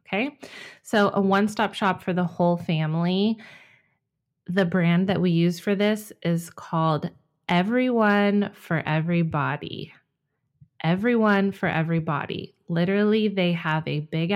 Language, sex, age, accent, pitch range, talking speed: English, female, 20-39, American, 175-215 Hz, 125 wpm